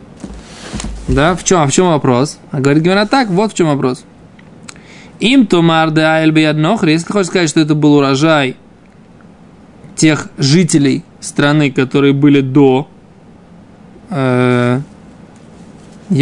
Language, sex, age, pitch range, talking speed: Russian, male, 20-39, 140-190 Hz, 115 wpm